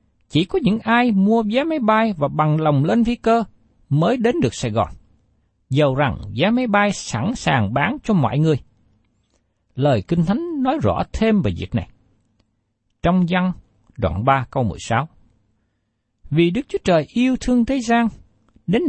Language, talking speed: Vietnamese, 170 wpm